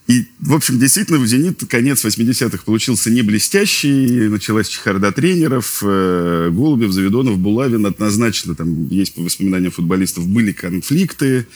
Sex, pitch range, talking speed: male, 90-120 Hz, 130 wpm